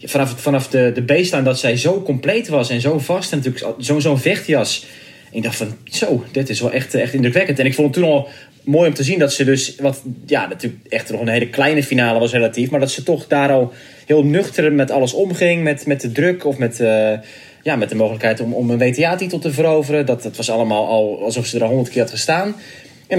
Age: 20-39